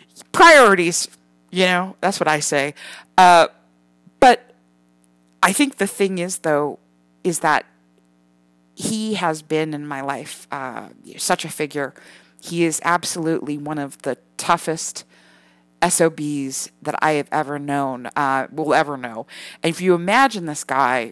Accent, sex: American, female